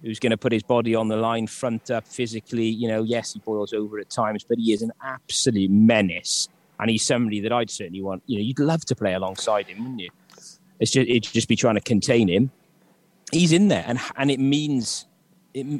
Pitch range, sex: 110-140 Hz, male